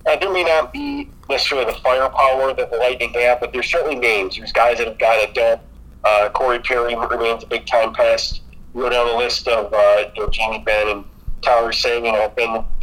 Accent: American